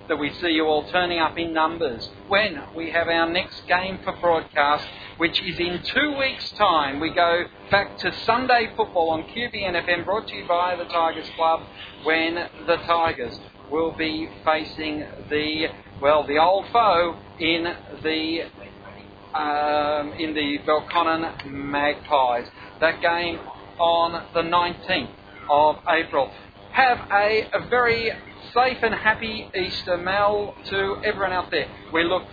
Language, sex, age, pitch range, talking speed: English, male, 40-59, 150-195 Hz, 145 wpm